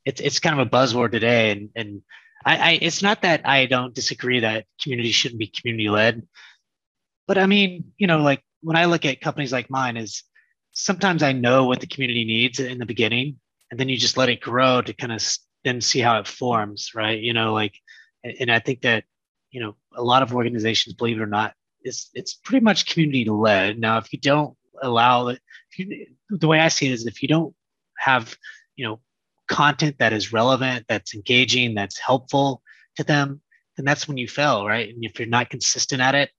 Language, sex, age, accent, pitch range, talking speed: English, male, 30-49, American, 115-145 Hz, 205 wpm